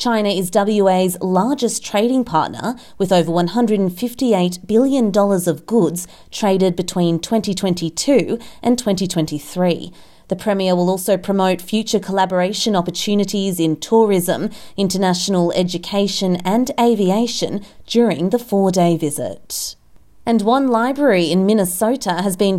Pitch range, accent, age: 180-225 Hz, Australian, 30-49